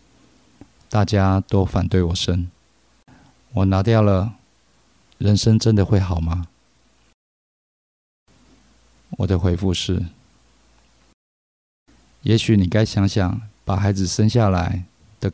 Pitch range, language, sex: 90-105 Hz, Chinese, male